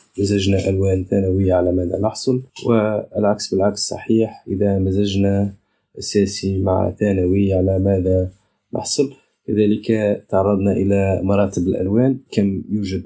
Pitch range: 95-105 Hz